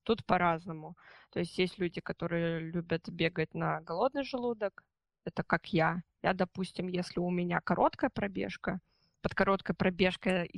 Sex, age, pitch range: female, 20-39, 170-200 Hz